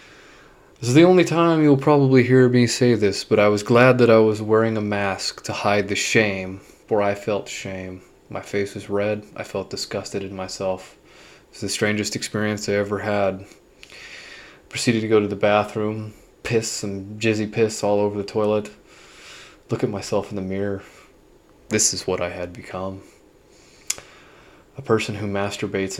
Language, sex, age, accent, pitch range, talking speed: English, male, 20-39, American, 100-115 Hz, 180 wpm